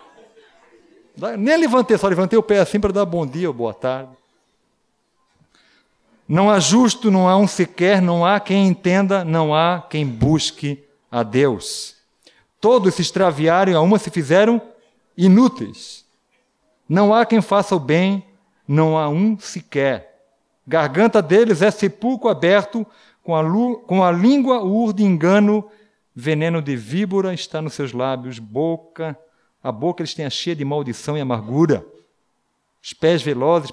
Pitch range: 130-195 Hz